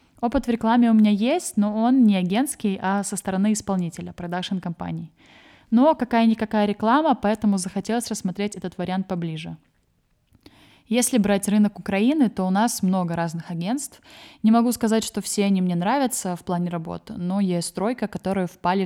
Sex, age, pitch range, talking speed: female, 20-39, 180-225 Hz, 160 wpm